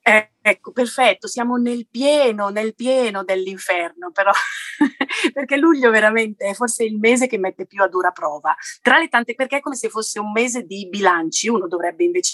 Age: 30-49